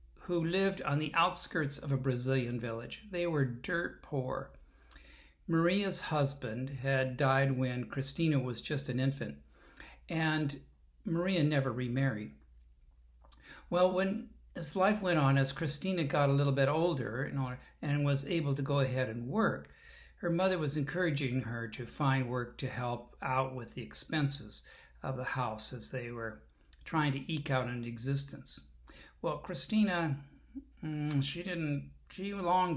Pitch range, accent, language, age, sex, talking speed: 120-160 Hz, American, English, 60-79, male, 145 wpm